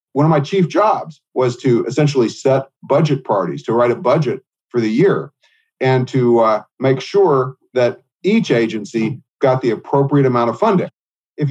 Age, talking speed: 40-59, 170 wpm